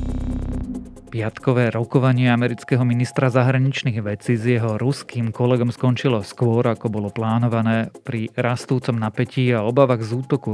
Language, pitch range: Slovak, 105-125 Hz